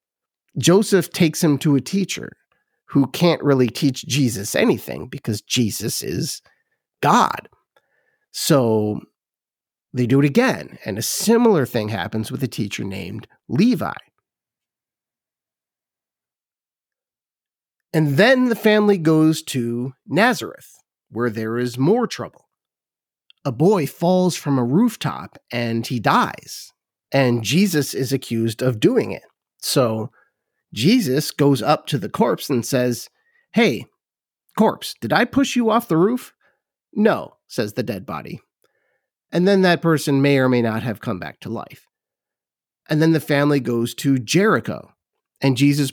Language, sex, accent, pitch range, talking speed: English, male, American, 120-170 Hz, 135 wpm